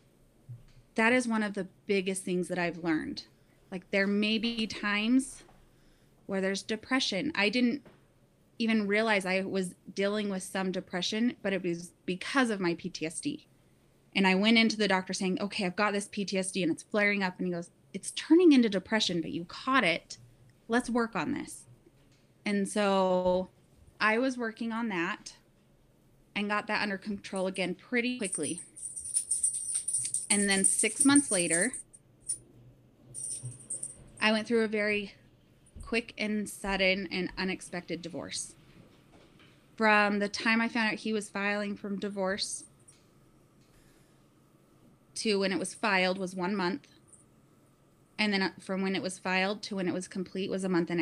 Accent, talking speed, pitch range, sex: American, 155 wpm, 180-215 Hz, female